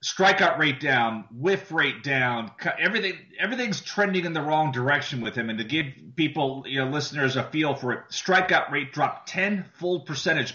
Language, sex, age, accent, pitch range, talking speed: English, male, 30-49, American, 130-165 Hz, 180 wpm